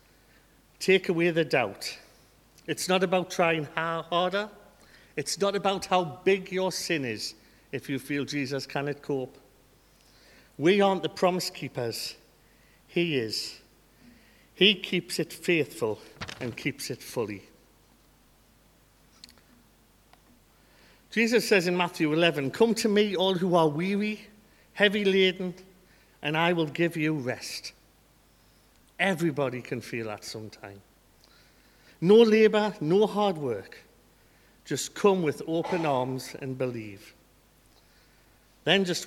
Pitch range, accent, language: 125-185 Hz, British, English